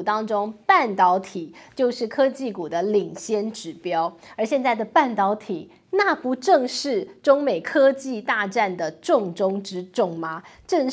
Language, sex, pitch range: Chinese, female, 195-275 Hz